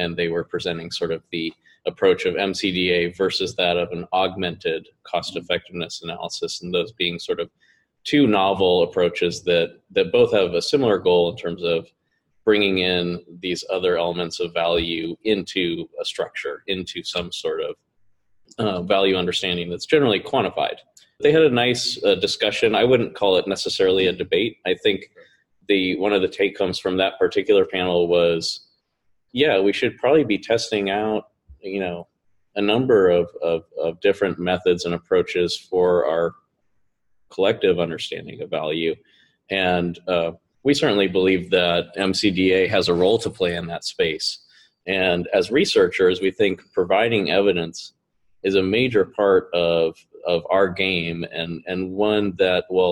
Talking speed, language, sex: 160 wpm, English, male